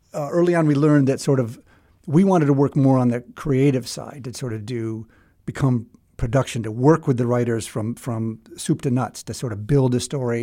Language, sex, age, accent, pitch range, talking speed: English, male, 50-69, American, 120-140 Hz, 225 wpm